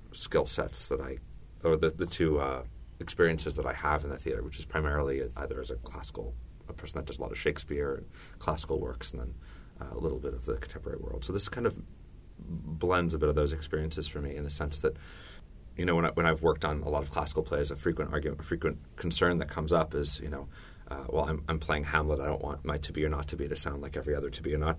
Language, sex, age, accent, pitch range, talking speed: English, male, 30-49, American, 75-80 Hz, 265 wpm